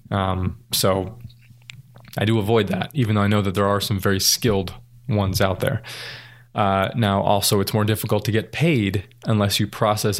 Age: 20-39